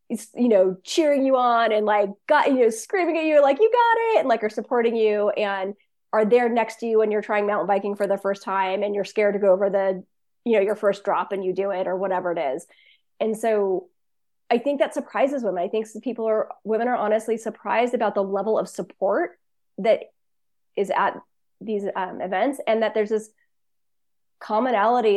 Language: English